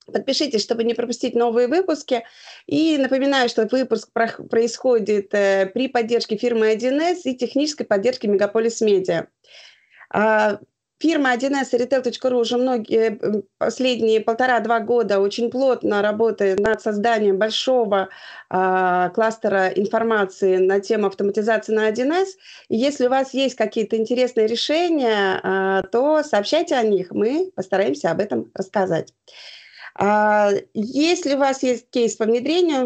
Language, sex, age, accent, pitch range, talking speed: Russian, female, 30-49, native, 210-255 Hz, 130 wpm